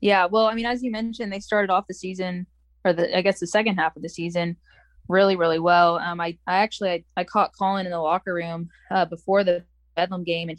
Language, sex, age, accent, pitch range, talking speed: English, female, 10-29, American, 155-180 Hz, 245 wpm